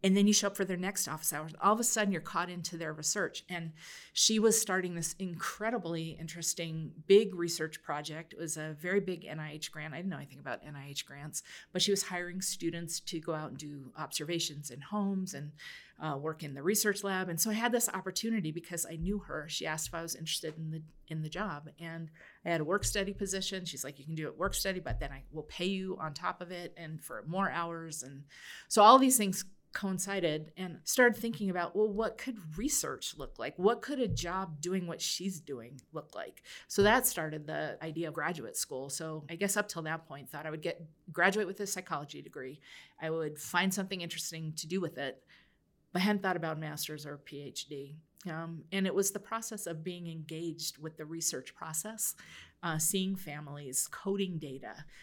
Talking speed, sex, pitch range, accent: 220 wpm, female, 155-190 Hz, American